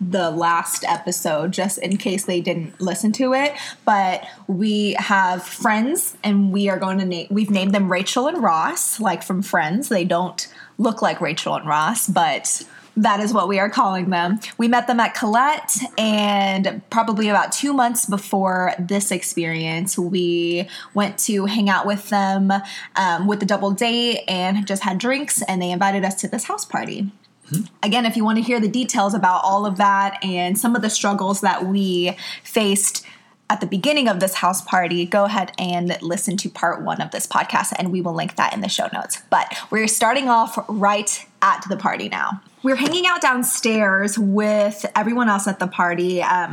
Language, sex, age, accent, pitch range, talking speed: English, female, 20-39, American, 190-230 Hz, 190 wpm